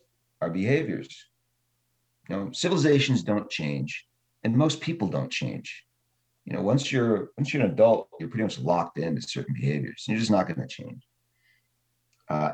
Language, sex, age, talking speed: English, male, 40-59, 165 wpm